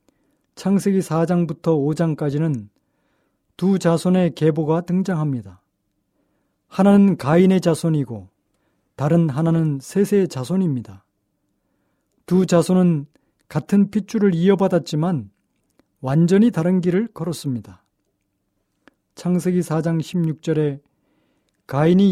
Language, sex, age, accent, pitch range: Korean, male, 40-59, native, 135-185 Hz